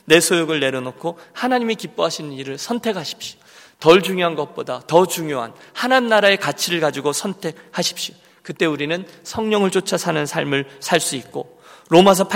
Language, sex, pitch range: Korean, male, 145-200 Hz